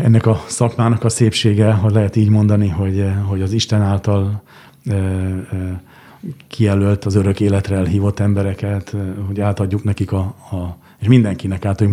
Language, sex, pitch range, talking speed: Hungarian, male, 95-110 Hz, 140 wpm